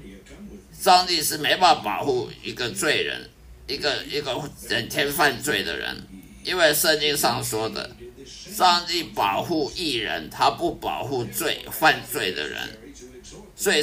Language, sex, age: Chinese, male, 50-69